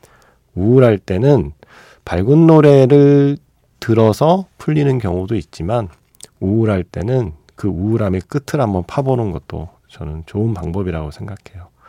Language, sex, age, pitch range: Korean, male, 40-59, 90-135 Hz